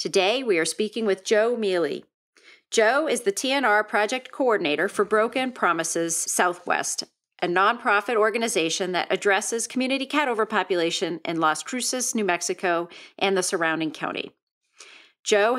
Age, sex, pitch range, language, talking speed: 40-59, female, 195-235 Hz, English, 135 wpm